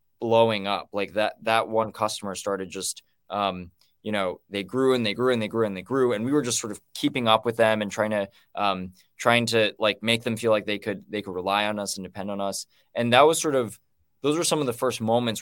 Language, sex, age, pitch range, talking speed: English, male, 20-39, 100-125 Hz, 265 wpm